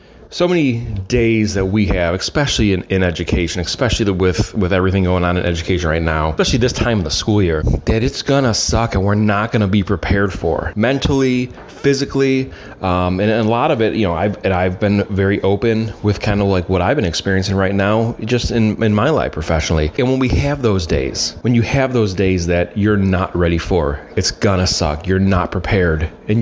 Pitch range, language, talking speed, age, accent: 95-115 Hz, English, 220 wpm, 30-49, American